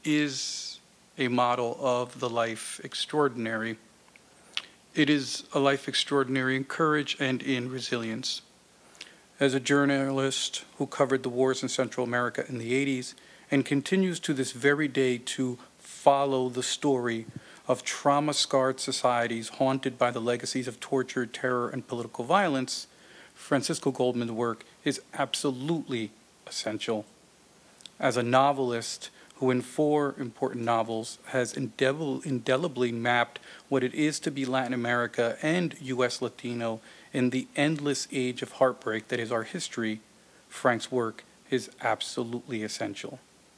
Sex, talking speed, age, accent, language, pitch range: male, 130 wpm, 50-69, American, English, 120-140 Hz